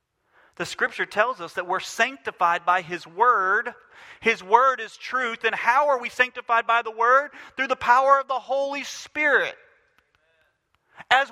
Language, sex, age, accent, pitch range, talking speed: English, male, 40-59, American, 210-285 Hz, 160 wpm